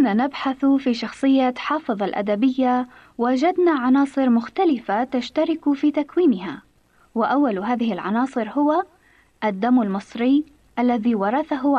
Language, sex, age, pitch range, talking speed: Arabic, female, 20-39, 225-295 Hz, 100 wpm